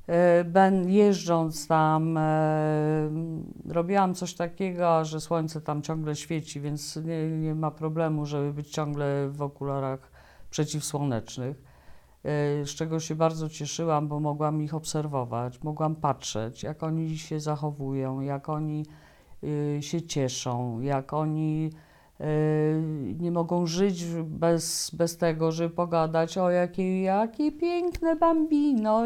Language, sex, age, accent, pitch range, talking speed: Polish, female, 50-69, native, 150-195 Hz, 115 wpm